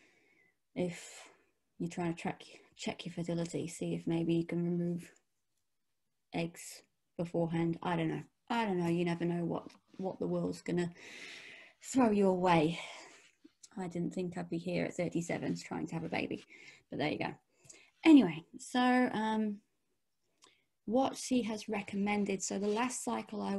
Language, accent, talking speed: English, British, 160 wpm